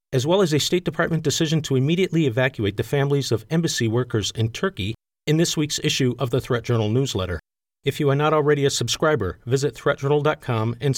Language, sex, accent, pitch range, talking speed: English, male, American, 125-155 Hz, 195 wpm